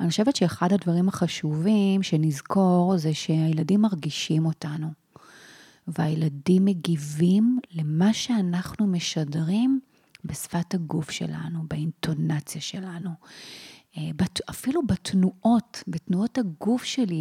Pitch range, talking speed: 160-195 Hz, 85 wpm